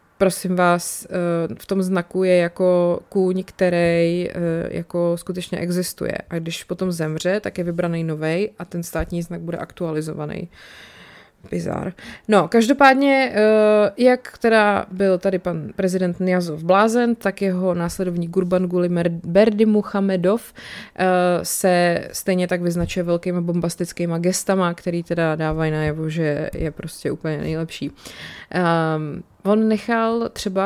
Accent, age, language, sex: native, 20-39, Czech, female